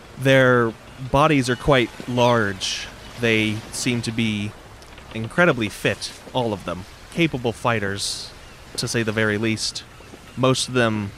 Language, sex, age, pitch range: English, male, 30-49, 105-130 Hz